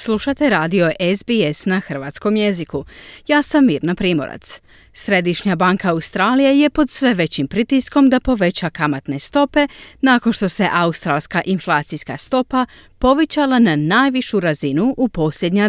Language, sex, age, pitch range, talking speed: Croatian, female, 40-59, 160-245 Hz, 130 wpm